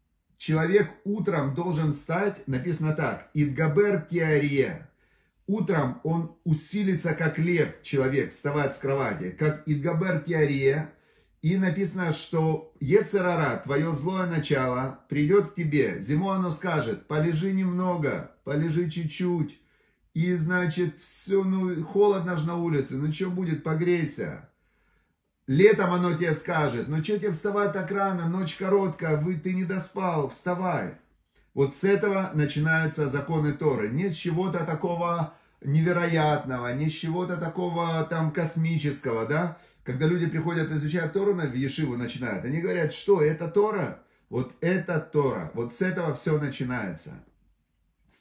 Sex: male